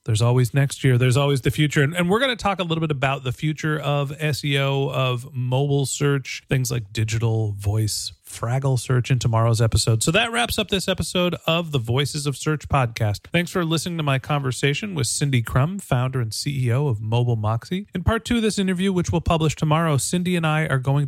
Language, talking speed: English, 215 wpm